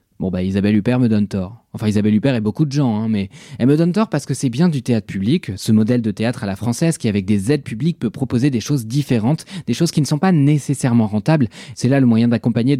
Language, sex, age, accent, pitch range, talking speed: French, male, 20-39, French, 110-150 Hz, 265 wpm